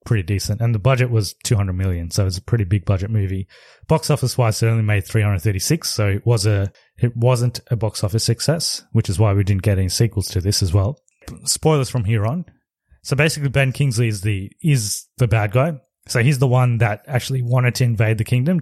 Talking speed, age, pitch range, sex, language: 225 wpm, 20-39, 105-130 Hz, male, English